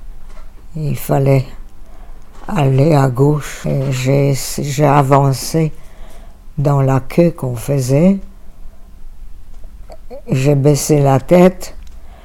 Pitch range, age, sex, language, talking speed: 100-155 Hz, 60-79, female, French, 80 wpm